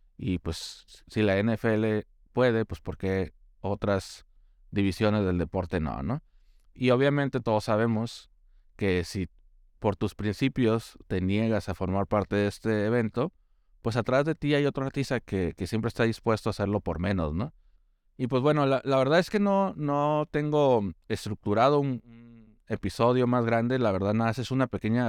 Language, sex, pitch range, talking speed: Spanish, male, 95-120 Hz, 170 wpm